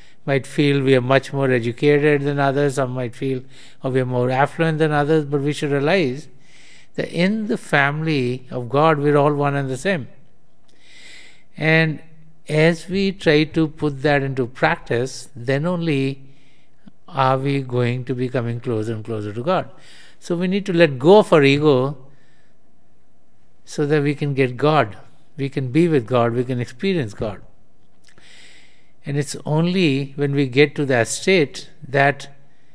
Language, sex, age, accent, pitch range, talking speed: English, male, 60-79, Indian, 130-155 Hz, 165 wpm